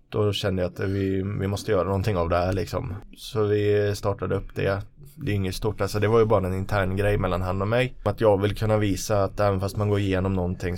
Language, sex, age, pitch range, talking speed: English, male, 20-39, 95-120 Hz, 250 wpm